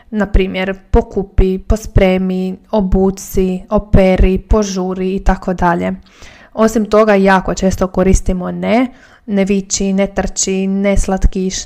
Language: Croatian